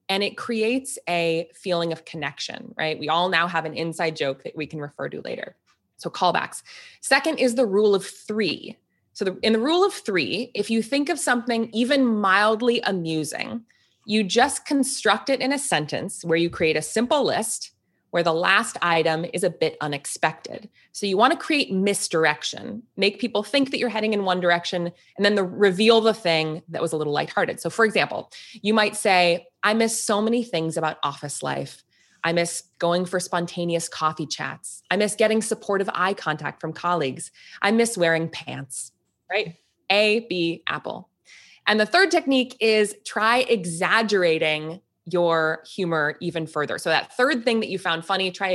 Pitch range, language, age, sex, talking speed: 160-220 Hz, English, 20-39, female, 180 wpm